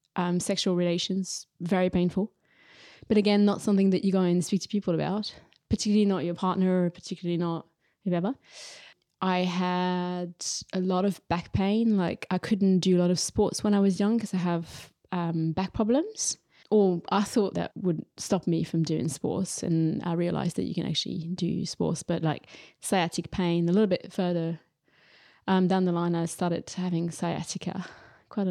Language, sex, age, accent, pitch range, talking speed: English, female, 20-39, British, 170-200 Hz, 180 wpm